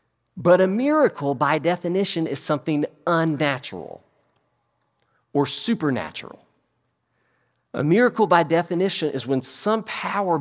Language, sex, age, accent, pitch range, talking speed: English, male, 40-59, American, 115-175 Hz, 105 wpm